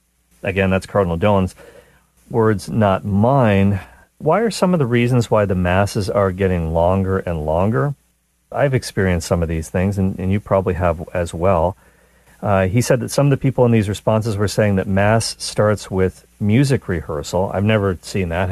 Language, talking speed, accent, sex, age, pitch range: English, 185 wpm, American, male, 40-59, 85-110 Hz